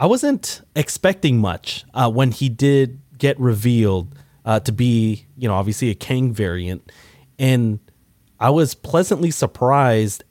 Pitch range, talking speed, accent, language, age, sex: 100-135 Hz, 140 wpm, American, English, 30-49, male